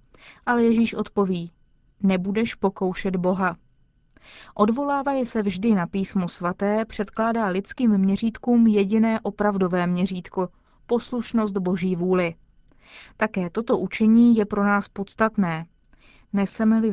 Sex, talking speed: female, 105 wpm